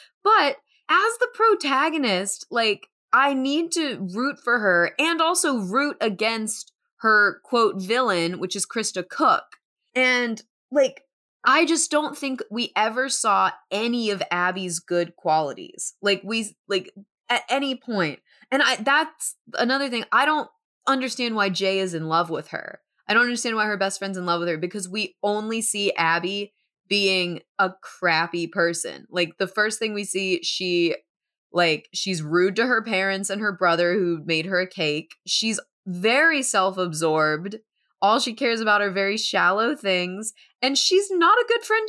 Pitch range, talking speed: 190-275 Hz, 165 wpm